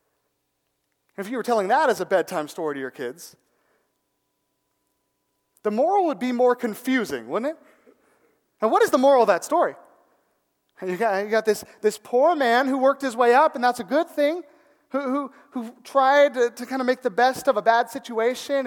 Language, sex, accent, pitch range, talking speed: English, male, American, 205-280 Hz, 195 wpm